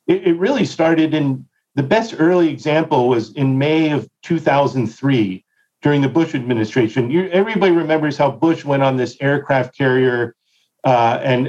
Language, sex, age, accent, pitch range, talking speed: English, male, 50-69, American, 135-170 Hz, 145 wpm